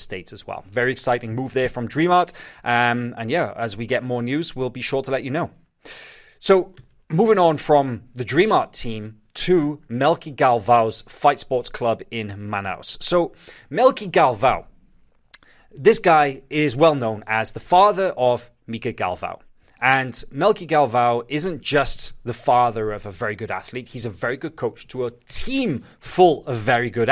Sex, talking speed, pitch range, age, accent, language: male, 170 wpm, 120-150 Hz, 20-39, British, English